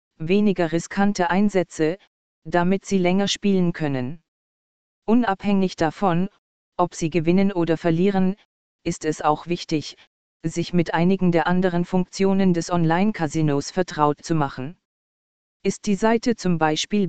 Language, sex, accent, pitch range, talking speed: German, female, German, 165-195 Hz, 125 wpm